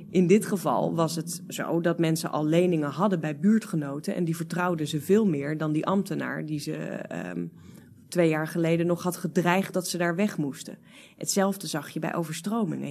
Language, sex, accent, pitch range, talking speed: Dutch, female, Dutch, 160-195 Hz, 185 wpm